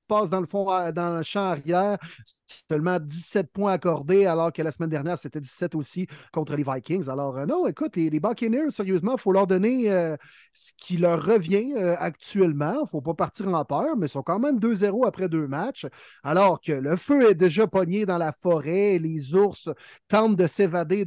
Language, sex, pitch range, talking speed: French, male, 160-210 Hz, 210 wpm